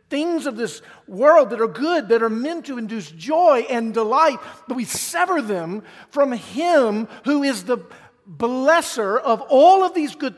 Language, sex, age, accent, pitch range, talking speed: English, male, 50-69, American, 155-225 Hz, 175 wpm